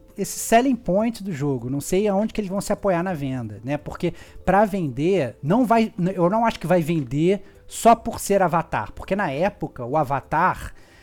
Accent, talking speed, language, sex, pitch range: Brazilian, 195 wpm, Portuguese, male, 140-190 Hz